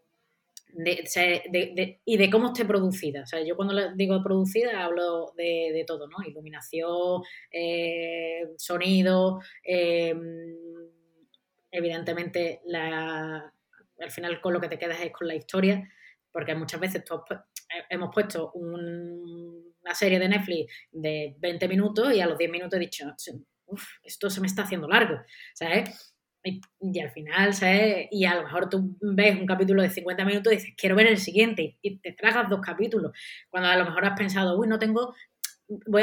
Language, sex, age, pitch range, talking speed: Spanish, female, 20-39, 170-200 Hz, 175 wpm